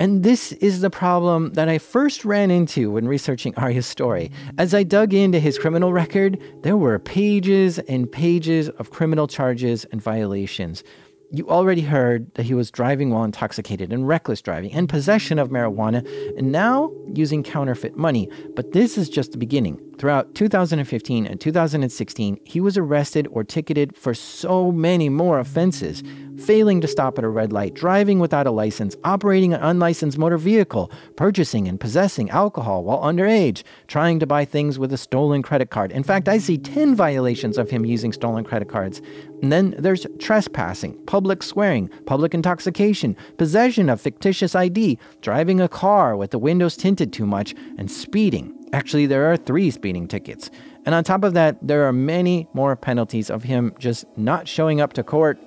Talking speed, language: 175 wpm, English